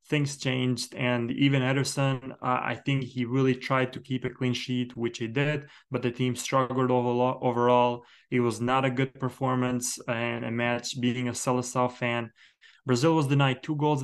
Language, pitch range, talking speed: English, 125-135 Hz, 175 wpm